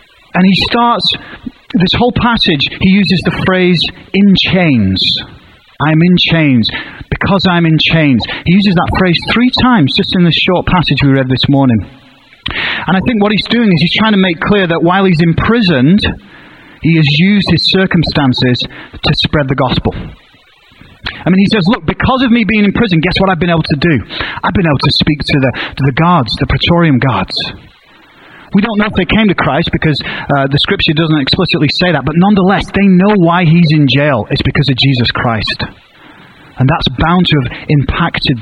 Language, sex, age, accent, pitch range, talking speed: English, male, 30-49, British, 140-190 Hz, 195 wpm